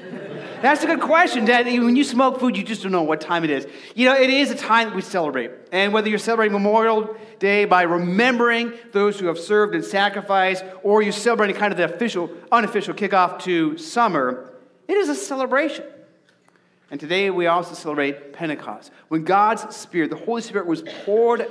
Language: English